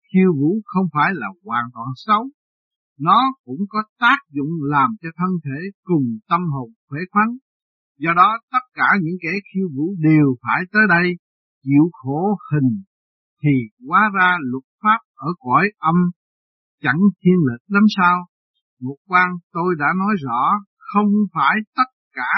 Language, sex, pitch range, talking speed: Vietnamese, male, 145-200 Hz, 160 wpm